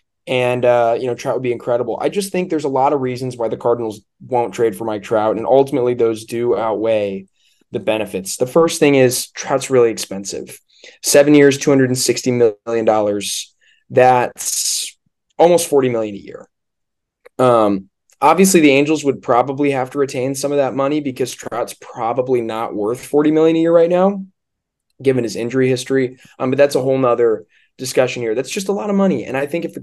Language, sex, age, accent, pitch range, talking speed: English, male, 20-39, American, 115-145 Hz, 190 wpm